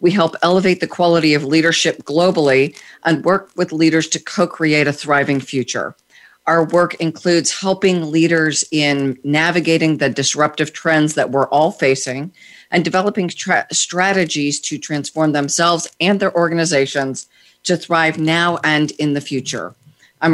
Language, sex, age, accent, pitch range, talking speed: English, female, 40-59, American, 145-170 Hz, 140 wpm